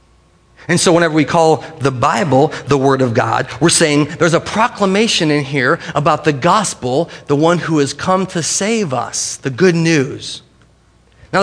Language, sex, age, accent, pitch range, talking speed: English, male, 30-49, American, 140-205 Hz, 175 wpm